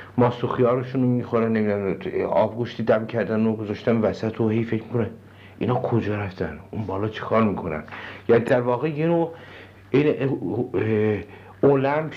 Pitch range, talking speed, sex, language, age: 95-125 Hz, 125 wpm, male, Persian, 60-79